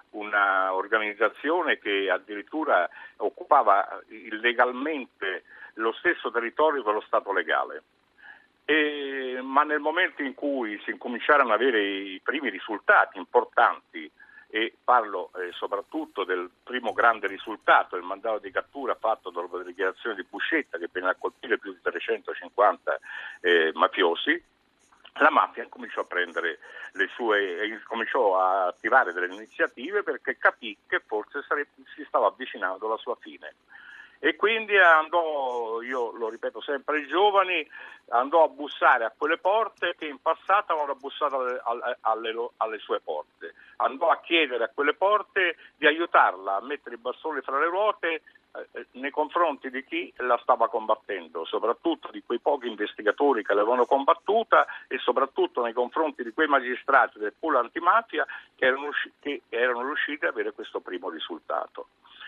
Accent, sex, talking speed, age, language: native, male, 145 wpm, 60-79, Italian